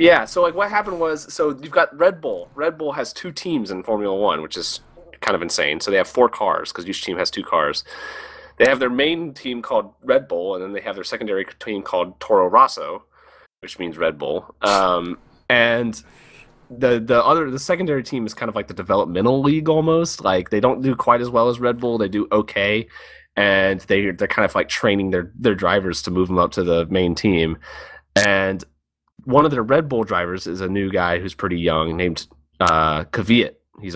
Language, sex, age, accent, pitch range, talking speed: English, male, 30-49, American, 85-120 Hz, 215 wpm